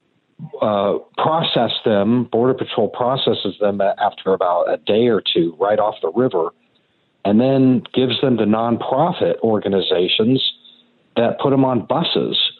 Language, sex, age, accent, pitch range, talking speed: English, male, 50-69, American, 100-130 Hz, 145 wpm